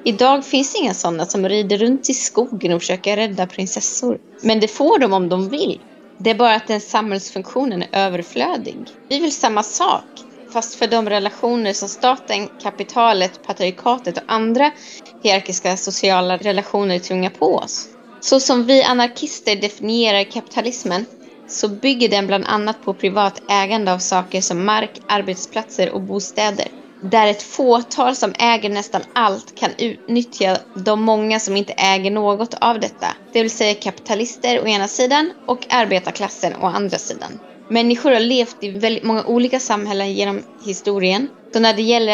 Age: 20-39